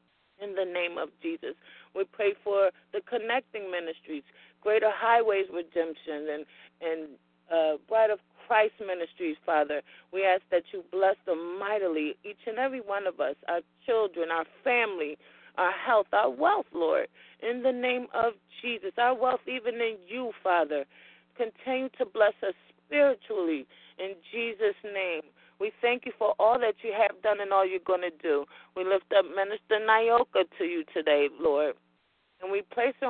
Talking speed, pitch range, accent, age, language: 165 wpm, 180-245 Hz, American, 30-49, English